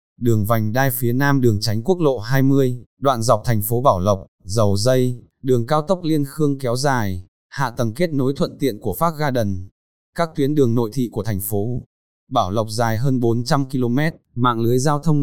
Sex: male